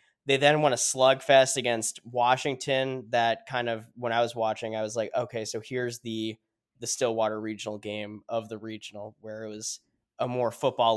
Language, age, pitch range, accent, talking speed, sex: English, 10-29, 115-130 Hz, American, 185 wpm, male